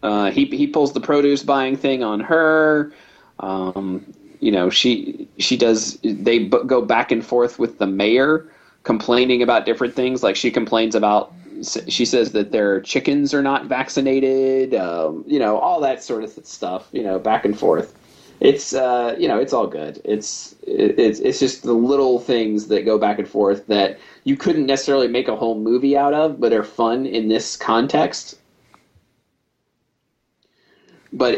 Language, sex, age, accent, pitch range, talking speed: English, male, 30-49, American, 105-140 Hz, 175 wpm